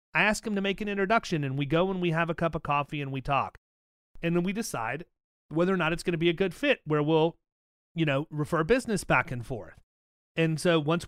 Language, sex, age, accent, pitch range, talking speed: English, male, 30-49, American, 130-170 Hz, 250 wpm